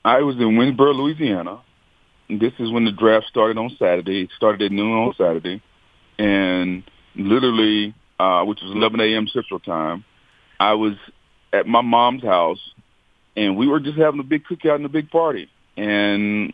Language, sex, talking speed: English, male, 170 wpm